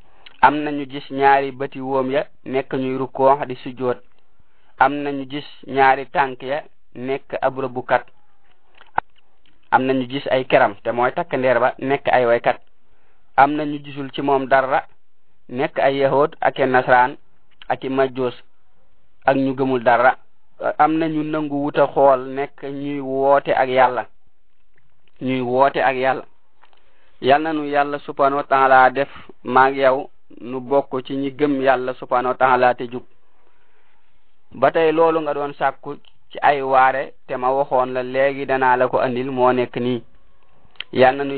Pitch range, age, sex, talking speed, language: 130-140 Hz, 30-49, male, 95 wpm, French